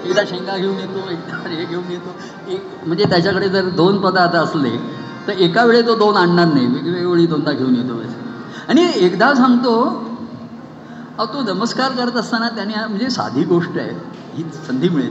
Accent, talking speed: native, 175 wpm